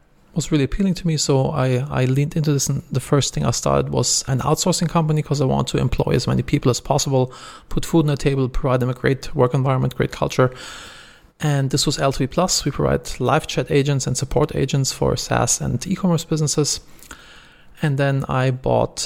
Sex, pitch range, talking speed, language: male, 130-155 Hz, 210 wpm, English